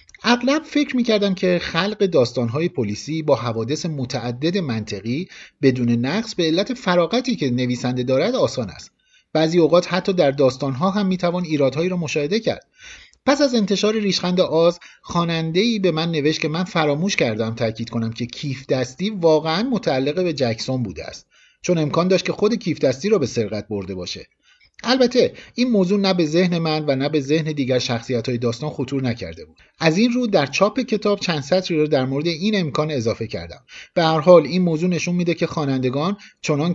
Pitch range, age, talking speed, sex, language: 135-200 Hz, 50-69, 180 wpm, male, Persian